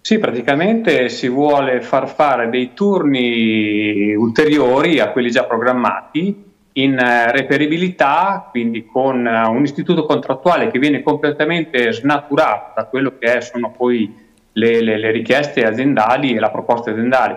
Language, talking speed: Italian, 135 wpm